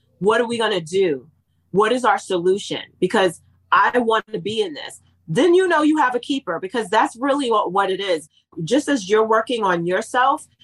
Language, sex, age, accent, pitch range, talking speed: English, female, 30-49, American, 185-220 Hz, 195 wpm